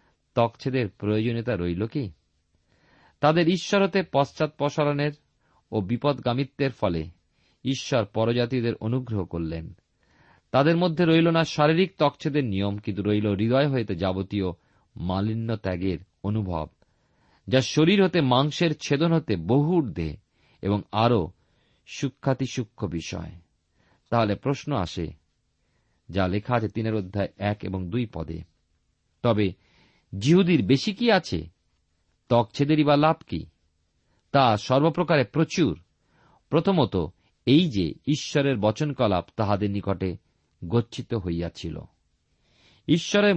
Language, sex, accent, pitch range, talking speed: Bengali, male, native, 95-145 Hz, 105 wpm